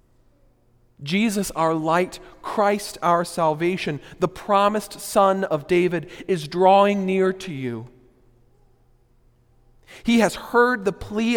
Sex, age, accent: male, 40-59, American